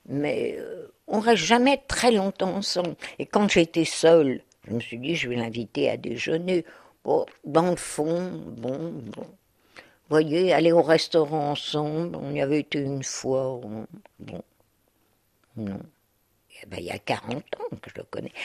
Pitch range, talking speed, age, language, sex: 145-230 Hz, 170 wpm, 60-79, French, female